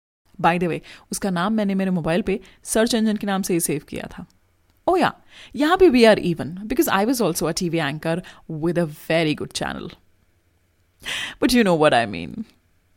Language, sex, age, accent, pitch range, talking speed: Hindi, female, 30-49, native, 155-230 Hz, 160 wpm